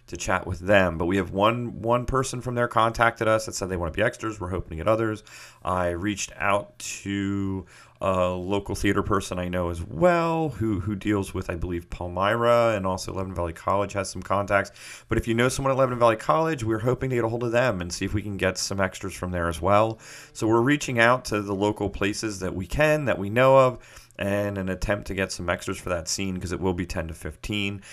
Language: English